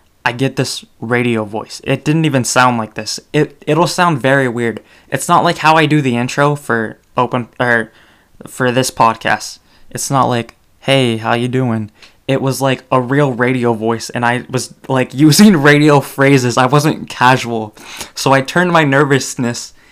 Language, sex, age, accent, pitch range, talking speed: English, male, 20-39, American, 115-140 Hz, 180 wpm